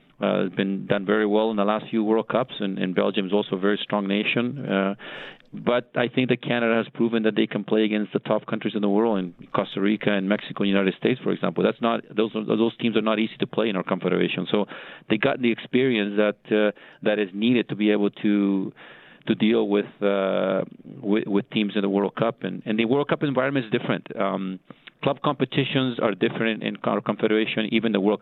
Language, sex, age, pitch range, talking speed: English, male, 40-59, 95-110 Hz, 230 wpm